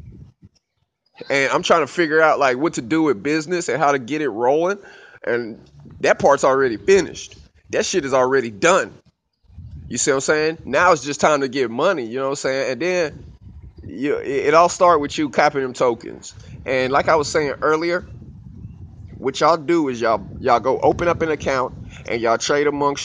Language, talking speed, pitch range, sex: English, 205 wpm, 130-165 Hz, male